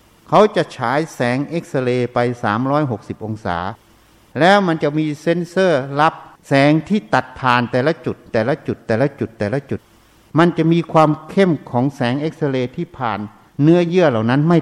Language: Thai